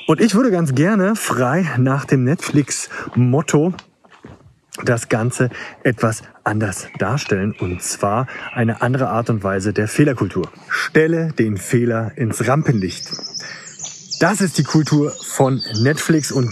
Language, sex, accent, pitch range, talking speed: German, male, German, 115-145 Hz, 125 wpm